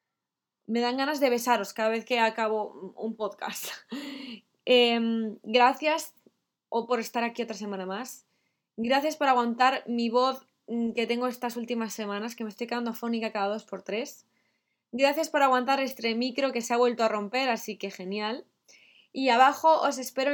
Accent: Spanish